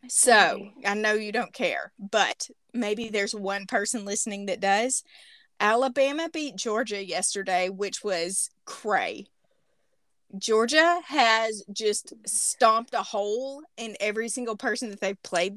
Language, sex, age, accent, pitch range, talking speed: English, female, 30-49, American, 210-275 Hz, 130 wpm